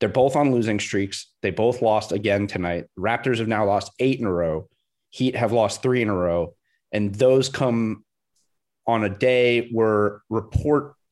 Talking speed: 180 wpm